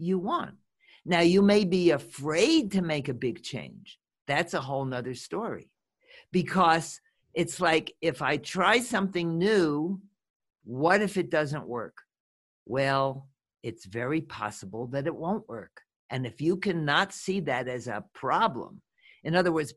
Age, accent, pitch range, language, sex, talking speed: 50-69, American, 140-200 Hz, English, male, 150 wpm